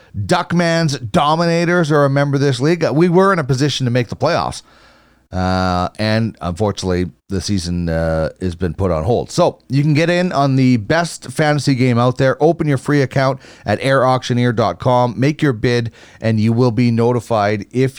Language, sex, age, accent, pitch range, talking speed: English, male, 30-49, American, 105-150 Hz, 185 wpm